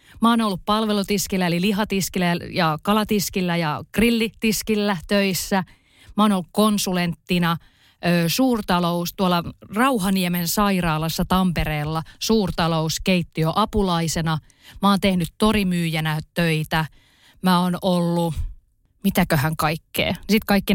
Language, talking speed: Finnish, 95 wpm